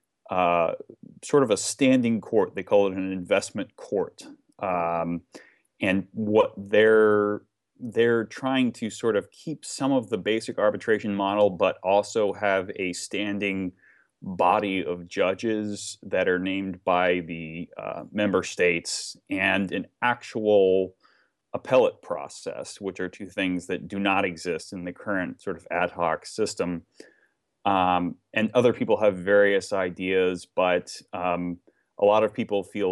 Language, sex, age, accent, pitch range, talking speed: English, male, 30-49, American, 90-105 Hz, 145 wpm